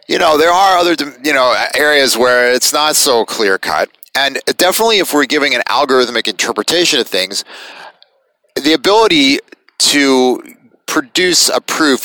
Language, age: English, 30-49